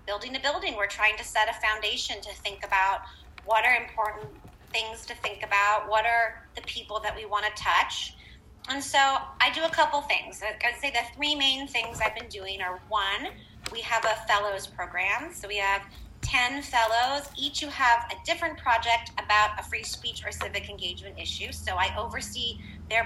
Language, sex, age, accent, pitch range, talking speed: English, female, 30-49, American, 210-265 Hz, 195 wpm